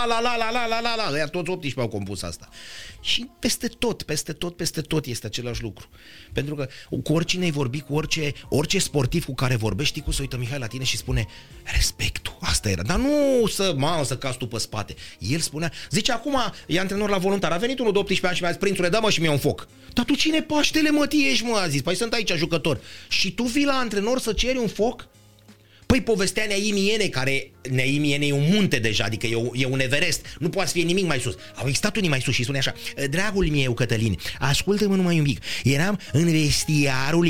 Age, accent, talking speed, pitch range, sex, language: 30-49, native, 225 wpm, 130-195 Hz, male, Romanian